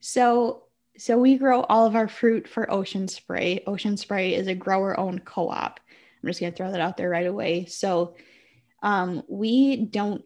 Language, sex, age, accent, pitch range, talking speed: English, female, 10-29, American, 175-220 Hz, 180 wpm